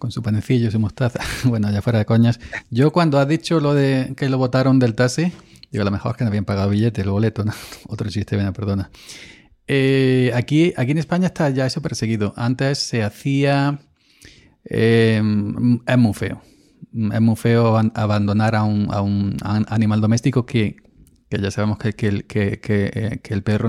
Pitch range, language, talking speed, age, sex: 105-125 Hz, Spanish, 200 wpm, 40-59, male